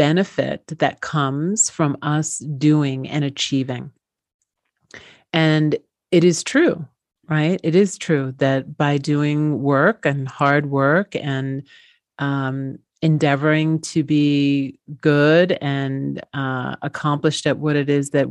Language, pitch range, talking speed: German, 135-155 Hz, 120 wpm